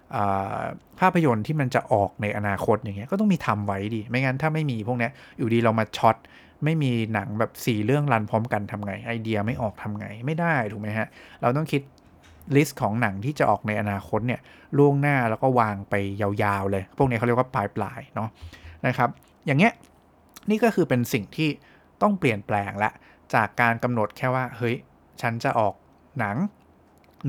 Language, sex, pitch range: English, male, 105-135 Hz